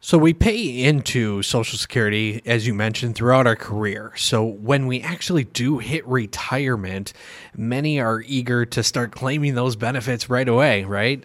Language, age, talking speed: English, 30-49, 160 wpm